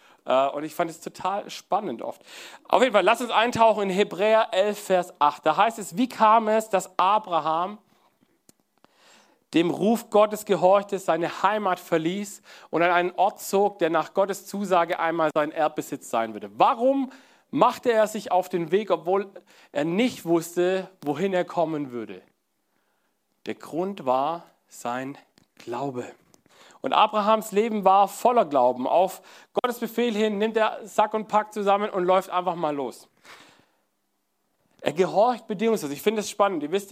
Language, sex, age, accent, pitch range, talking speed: German, male, 40-59, German, 165-210 Hz, 160 wpm